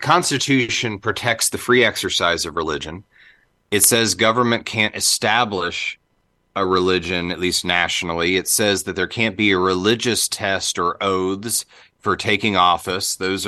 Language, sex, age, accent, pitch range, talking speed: English, male, 30-49, American, 95-115 Hz, 145 wpm